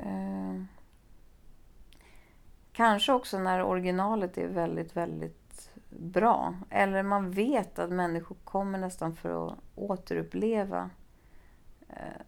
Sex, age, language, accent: female, 30-49, Swedish, native